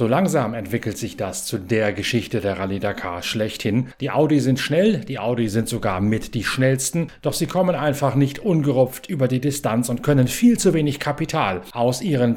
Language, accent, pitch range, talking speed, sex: German, German, 115-145 Hz, 195 wpm, male